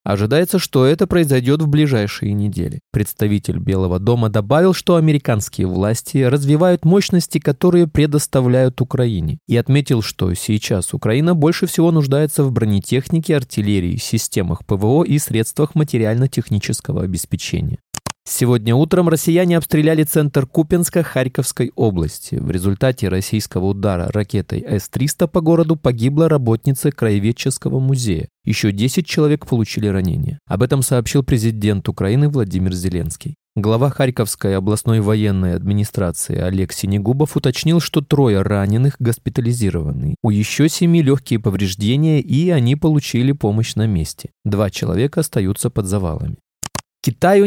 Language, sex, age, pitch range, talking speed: Russian, male, 20-39, 105-150 Hz, 125 wpm